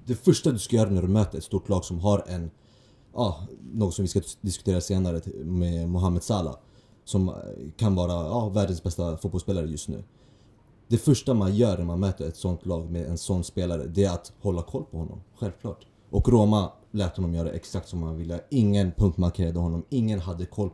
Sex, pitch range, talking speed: male, 90-105 Hz, 205 wpm